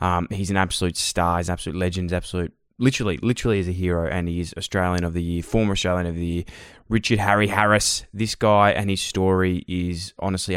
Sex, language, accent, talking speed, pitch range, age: male, English, Australian, 215 wpm, 90-105 Hz, 20-39